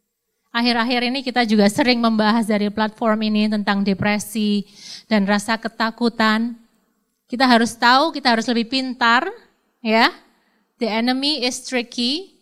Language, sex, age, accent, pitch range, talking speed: Indonesian, female, 20-39, native, 215-255 Hz, 125 wpm